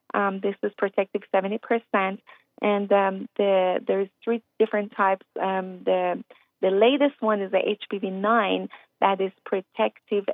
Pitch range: 185-215 Hz